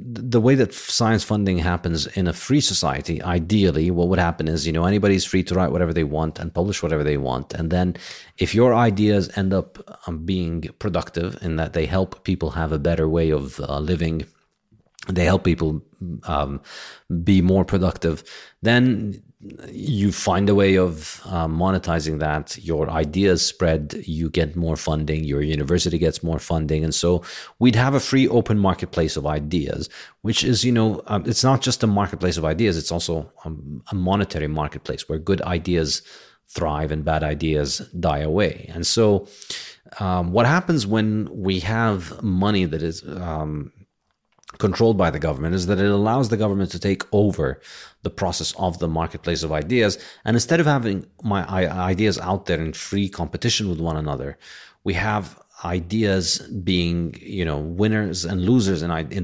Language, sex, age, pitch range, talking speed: English, male, 30-49, 80-100 Hz, 175 wpm